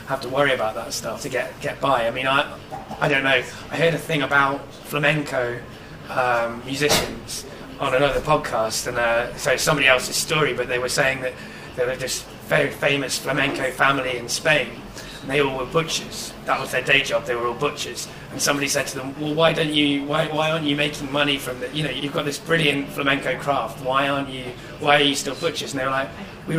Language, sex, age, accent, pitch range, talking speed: English, male, 30-49, British, 120-145 Hz, 225 wpm